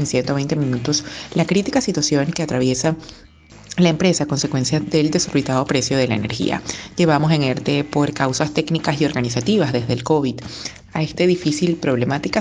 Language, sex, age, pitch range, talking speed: Spanish, female, 30-49, 130-165 Hz, 160 wpm